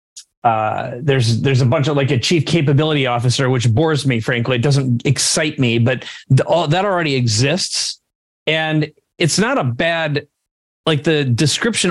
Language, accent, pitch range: English, American, 130-160 Hz